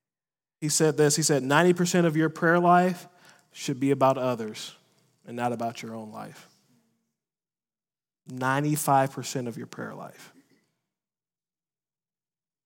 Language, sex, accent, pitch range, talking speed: English, male, American, 130-160 Hz, 120 wpm